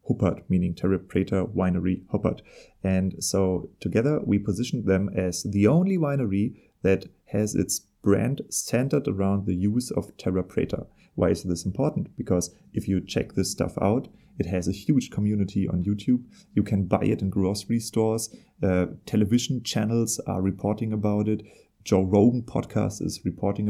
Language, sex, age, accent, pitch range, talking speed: English, male, 30-49, German, 95-110 Hz, 160 wpm